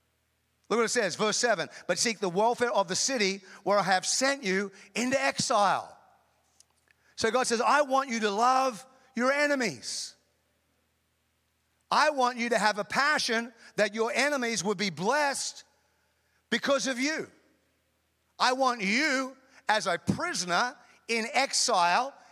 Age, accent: 40-59, American